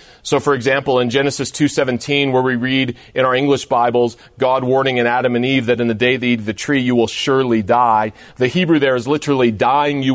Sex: male